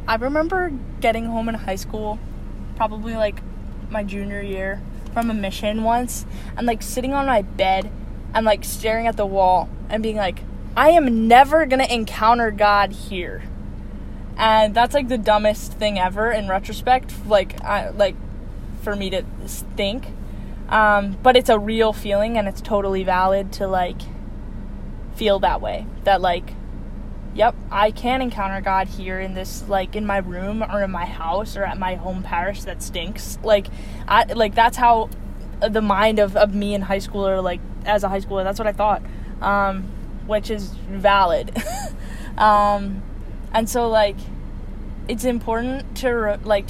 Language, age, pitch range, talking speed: English, 10-29, 195-225 Hz, 165 wpm